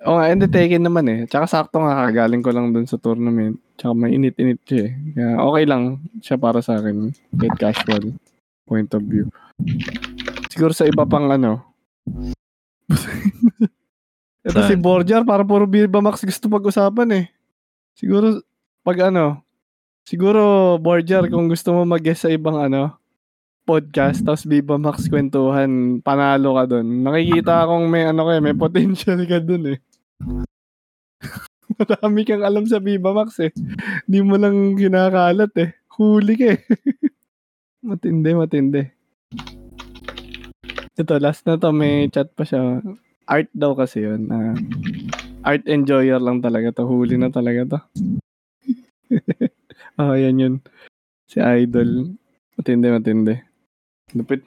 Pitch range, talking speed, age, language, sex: 130-195 Hz, 135 wpm, 20-39, Filipino, male